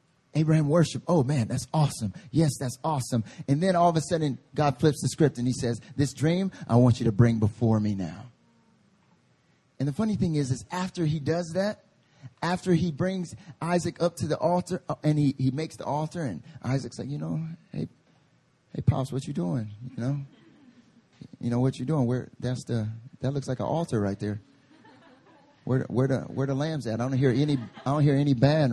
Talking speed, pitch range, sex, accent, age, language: 210 wpm, 120-160 Hz, male, American, 30-49, English